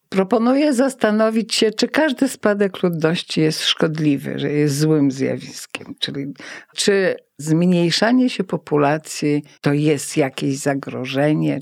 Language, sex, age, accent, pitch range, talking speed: Polish, female, 50-69, native, 145-215 Hz, 115 wpm